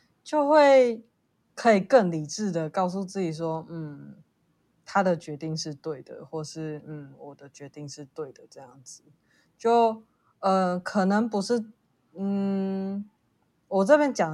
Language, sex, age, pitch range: Chinese, female, 20-39, 160-210 Hz